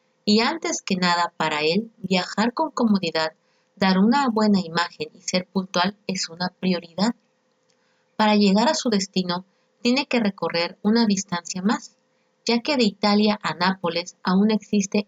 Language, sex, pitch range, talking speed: Spanish, female, 180-220 Hz, 150 wpm